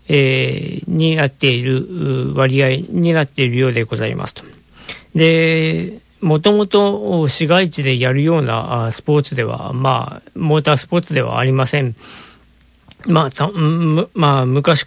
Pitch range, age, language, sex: 130-165 Hz, 50-69, Japanese, male